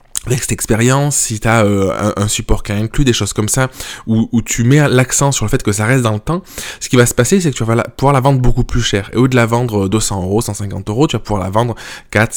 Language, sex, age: French, male, 20-39